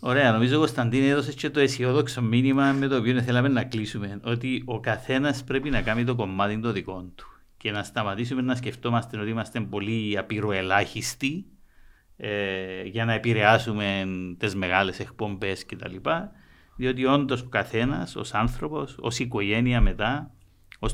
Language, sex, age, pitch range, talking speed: Greek, male, 50-69, 105-145 Hz, 150 wpm